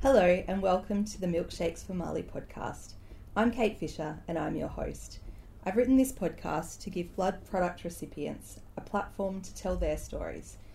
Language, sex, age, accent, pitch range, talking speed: English, female, 40-59, Australian, 155-195 Hz, 175 wpm